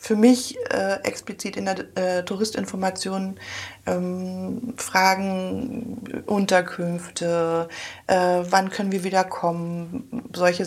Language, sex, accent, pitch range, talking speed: German, female, German, 160-205 Hz, 100 wpm